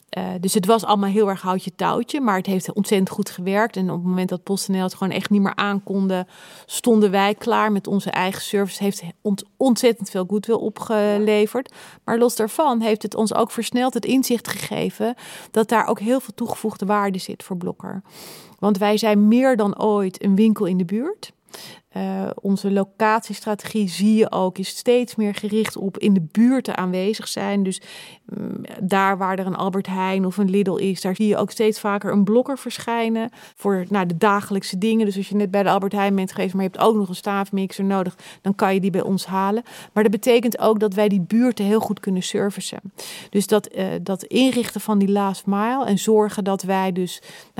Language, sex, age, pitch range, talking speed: Dutch, female, 30-49, 195-220 Hz, 210 wpm